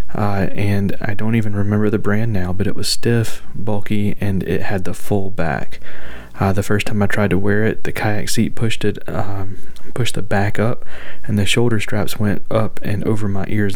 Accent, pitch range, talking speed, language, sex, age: American, 95-110 Hz, 215 wpm, English, male, 30-49